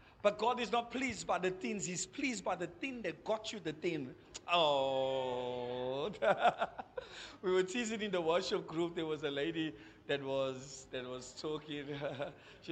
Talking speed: 170 wpm